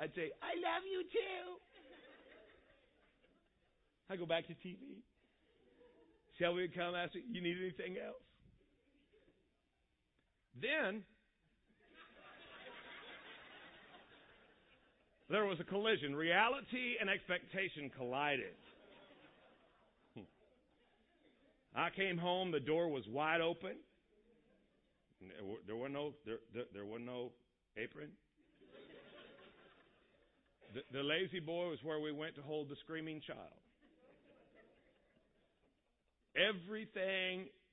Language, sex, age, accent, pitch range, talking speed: English, male, 50-69, American, 140-190 Hz, 95 wpm